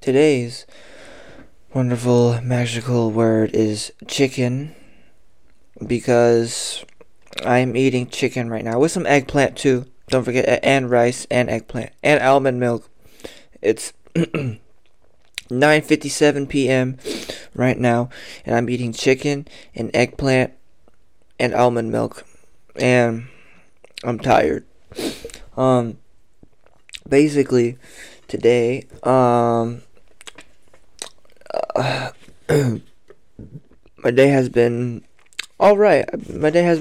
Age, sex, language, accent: 20-39, male, French, American